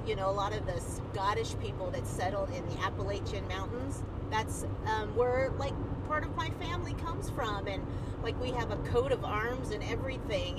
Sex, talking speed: female, 195 wpm